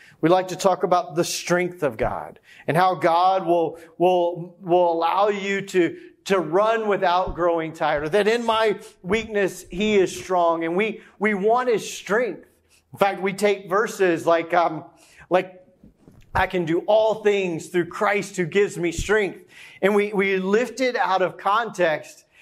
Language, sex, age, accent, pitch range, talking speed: English, male, 40-59, American, 175-210 Hz, 170 wpm